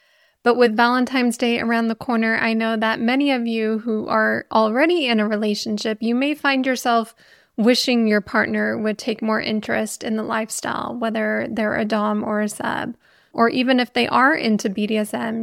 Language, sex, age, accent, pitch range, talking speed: English, female, 20-39, American, 220-250 Hz, 185 wpm